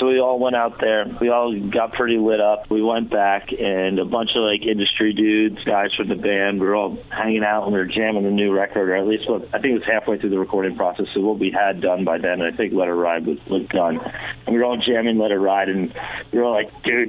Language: English